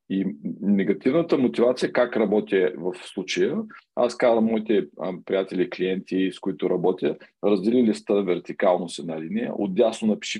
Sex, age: male, 40-59